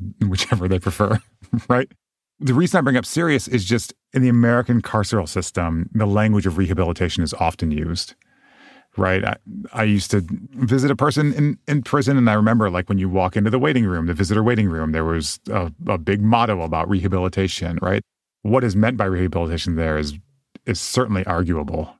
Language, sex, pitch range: English, male, 90-120 Hz